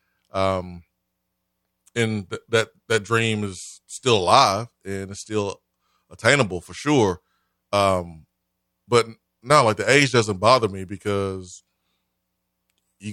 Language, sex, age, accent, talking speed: English, male, 20-39, American, 120 wpm